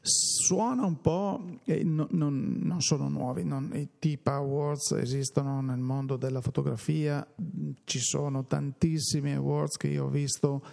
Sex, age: male, 50-69